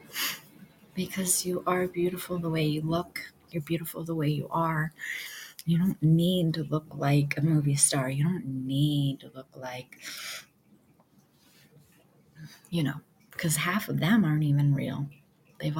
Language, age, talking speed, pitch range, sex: English, 30-49, 150 wpm, 150-185 Hz, female